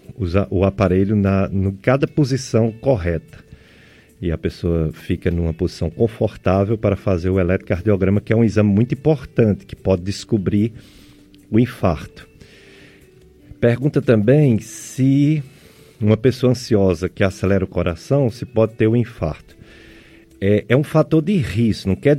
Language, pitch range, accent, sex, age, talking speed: Portuguese, 90-120 Hz, Brazilian, male, 50-69, 140 wpm